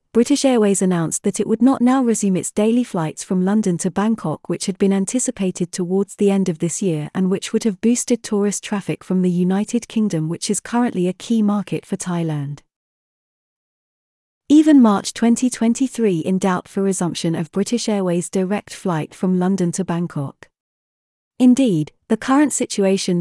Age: 30-49